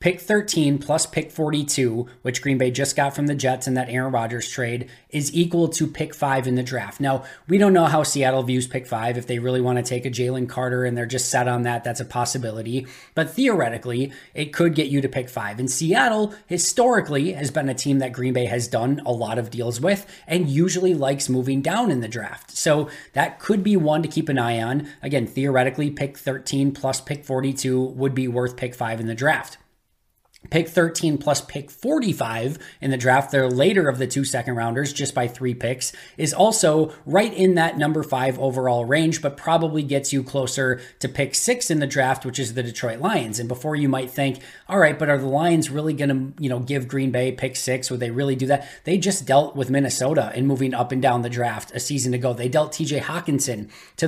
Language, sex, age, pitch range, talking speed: English, male, 20-39, 125-155 Hz, 225 wpm